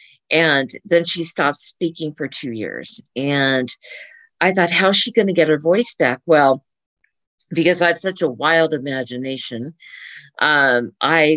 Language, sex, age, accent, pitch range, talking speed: English, female, 50-69, American, 150-185 Hz, 160 wpm